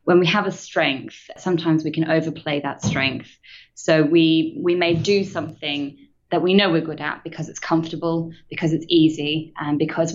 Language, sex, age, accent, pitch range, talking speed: English, female, 20-39, British, 150-170 Hz, 185 wpm